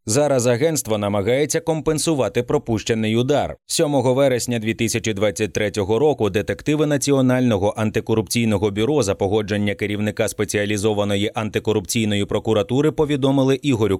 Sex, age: male, 30-49